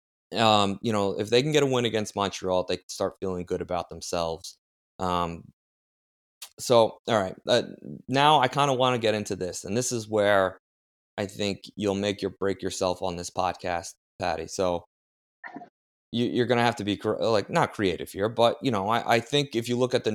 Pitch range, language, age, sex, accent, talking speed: 90-110 Hz, English, 20-39, male, American, 205 wpm